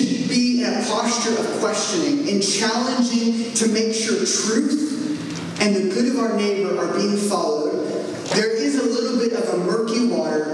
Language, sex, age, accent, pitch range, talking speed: English, male, 30-49, American, 155-255 Hz, 170 wpm